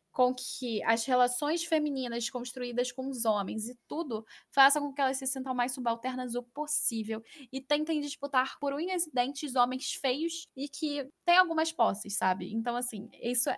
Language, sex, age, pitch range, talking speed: Portuguese, female, 10-29, 220-270 Hz, 170 wpm